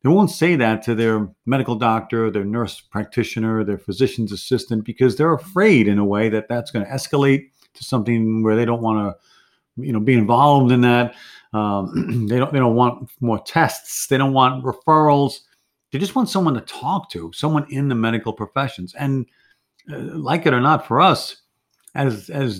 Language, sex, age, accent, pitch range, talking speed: English, male, 50-69, American, 110-140 Hz, 190 wpm